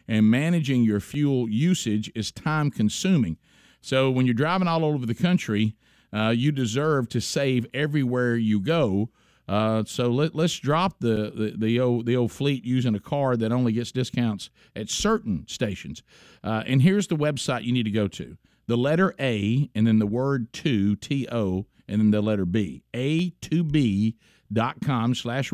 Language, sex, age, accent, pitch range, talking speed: English, male, 50-69, American, 115-155 Hz, 165 wpm